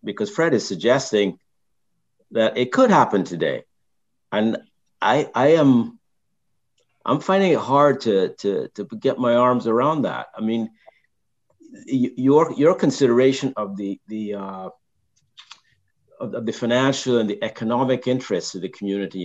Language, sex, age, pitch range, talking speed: English, male, 50-69, 100-145 Hz, 135 wpm